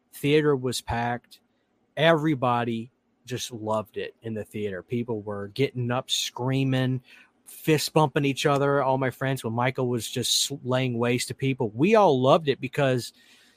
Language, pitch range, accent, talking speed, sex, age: English, 125-160 Hz, American, 155 wpm, male, 30-49